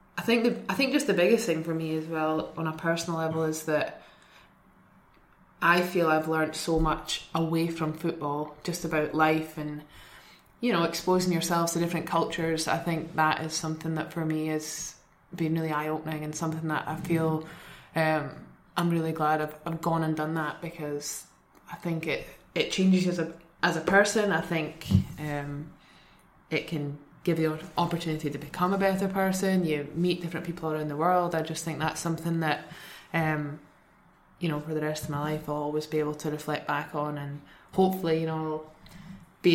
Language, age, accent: English, 20-39, British